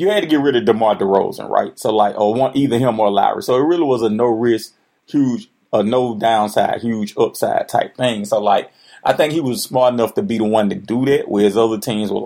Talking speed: 250 wpm